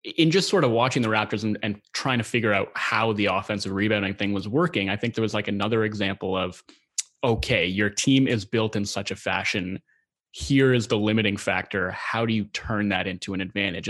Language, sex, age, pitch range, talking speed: English, male, 20-39, 100-120 Hz, 215 wpm